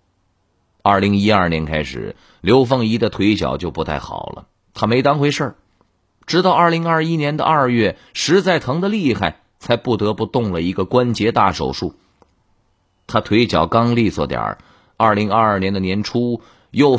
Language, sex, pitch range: Chinese, male, 90-120 Hz